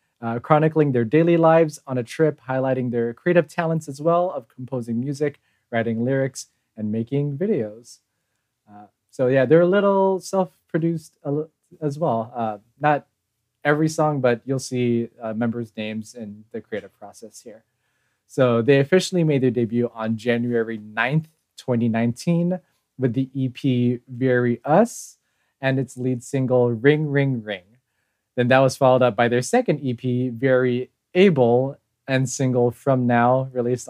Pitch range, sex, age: 120-145 Hz, male, 20-39